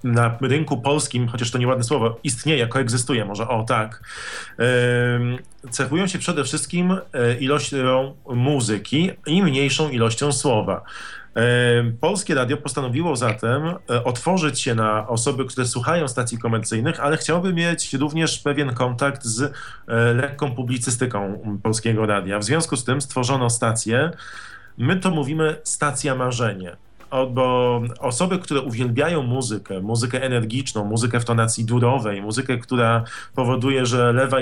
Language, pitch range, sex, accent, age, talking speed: Polish, 115-140 Hz, male, native, 40-59, 130 wpm